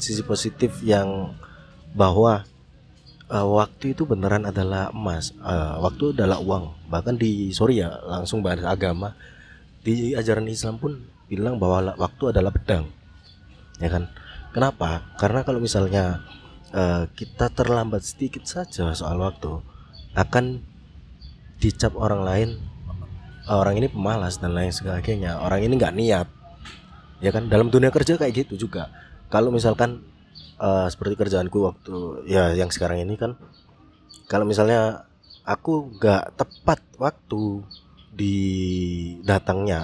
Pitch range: 90-115 Hz